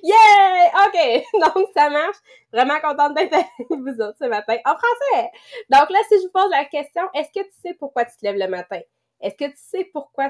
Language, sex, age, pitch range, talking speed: English, female, 20-39, 220-305 Hz, 220 wpm